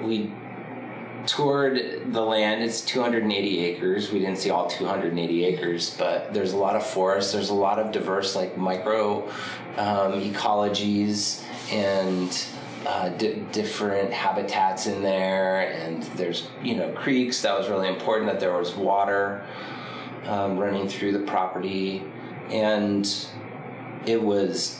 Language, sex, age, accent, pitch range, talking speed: English, male, 30-49, American, 95-115 Hz, 135 wpm